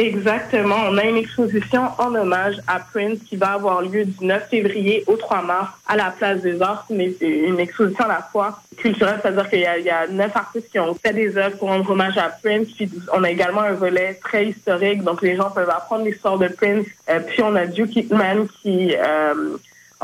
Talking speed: 230 wpm